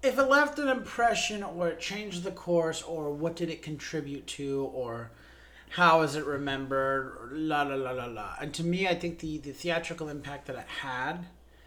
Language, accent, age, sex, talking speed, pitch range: English, American, 30-49, male, 195 wpm, 125-170 Hz